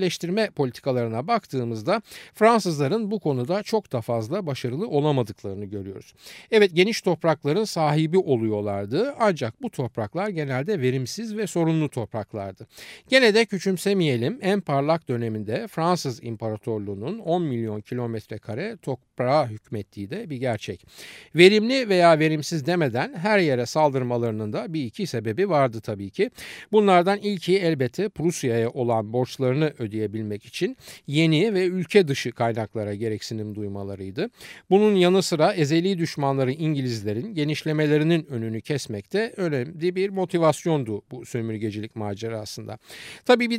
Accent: native